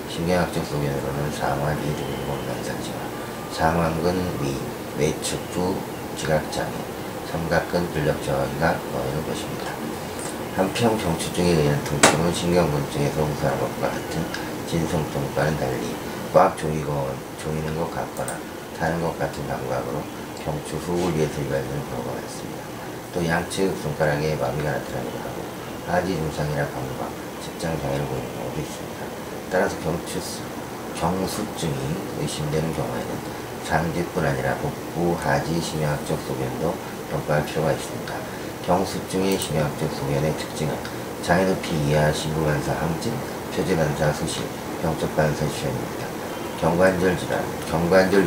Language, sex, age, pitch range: Korean, male, 40-59, 75-85 Hz